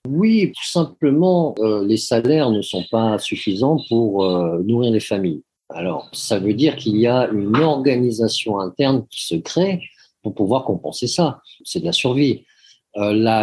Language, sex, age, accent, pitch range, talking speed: English, male, 50-69, French, 105-140 Hz, 170 wpm